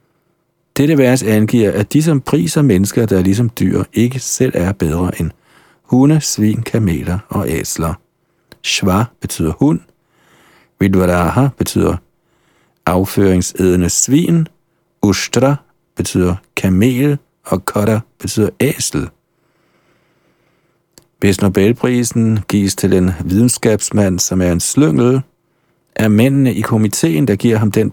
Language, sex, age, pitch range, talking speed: Danish, male, 50-69, 95-135 Hz, 115 wpm